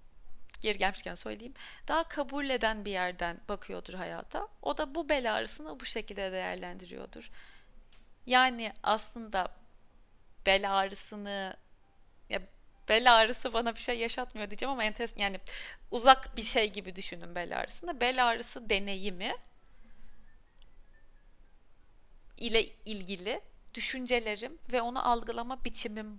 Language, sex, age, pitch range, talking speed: Turkish, female, 30-49, 195-250 Hz, 110 wpm